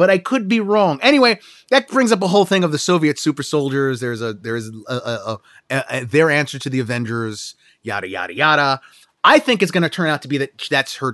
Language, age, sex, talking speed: English, 30-49, male, 235 wpm